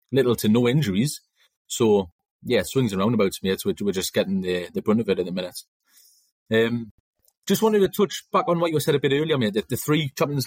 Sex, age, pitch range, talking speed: male, 30-49, 110-145 Hz, 230 wpm